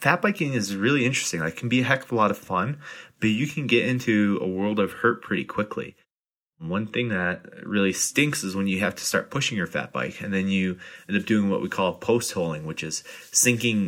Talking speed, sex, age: 240 wpm, male, 20-39